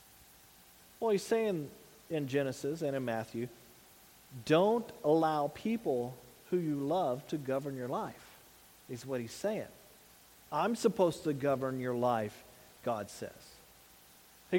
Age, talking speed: 40-59, 130 wpm